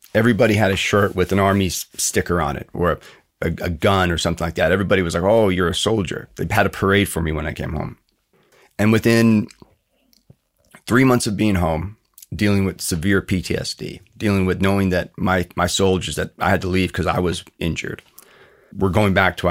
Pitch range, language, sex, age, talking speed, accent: 90-105 Hz, Ukrainian, male, 30-49, 205 wpm, American